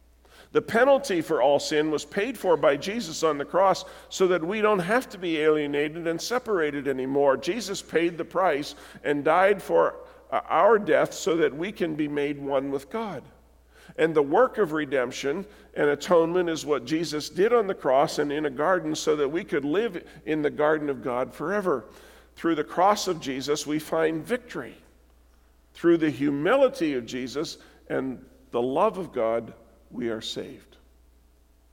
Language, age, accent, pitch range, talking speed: English, 50-69, American, 135-180 Hz, 175 wpm